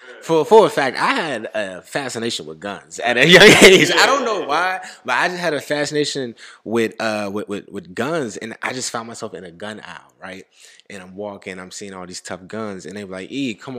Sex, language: male, English